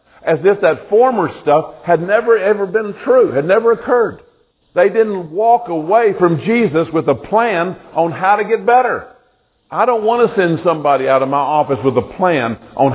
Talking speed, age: 190 wpm, 50-69